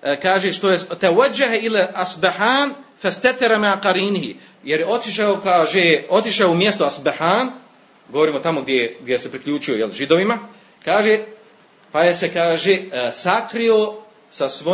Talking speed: 120 wpm